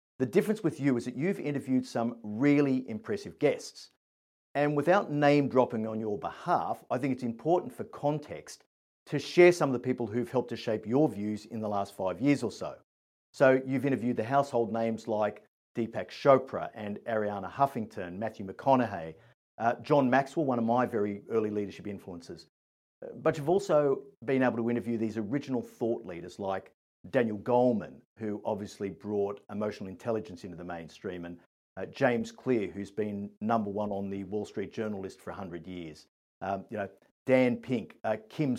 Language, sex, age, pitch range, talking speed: English, male, 50-69, 105-130 Hz, 175 wpm